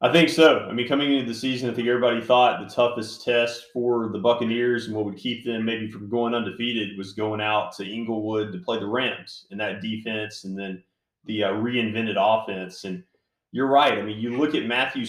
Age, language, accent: 30-49, English, American